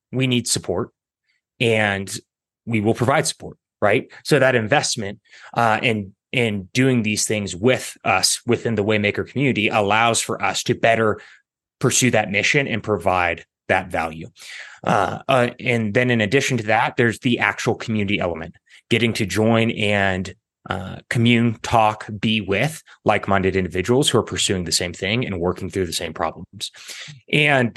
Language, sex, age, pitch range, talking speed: English, male, 30-49, 105-130 Hz, 160 wpm